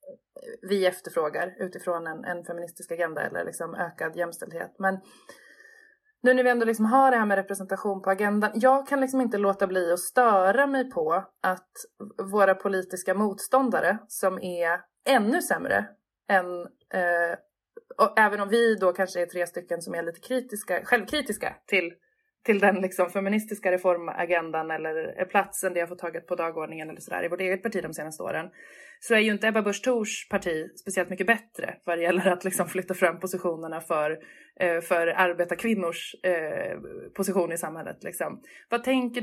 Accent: native